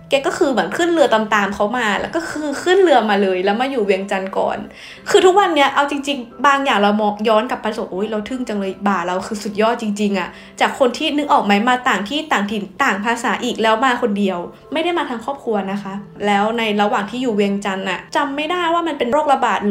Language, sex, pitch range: Thai, female, 205-265 Hz